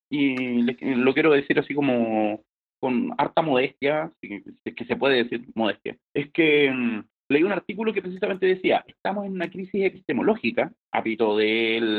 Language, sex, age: English, male, 30-49